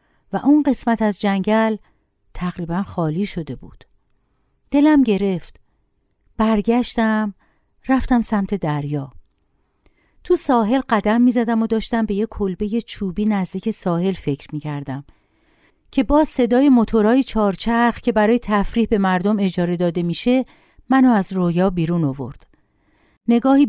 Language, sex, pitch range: Persian, female, 175-240 Hz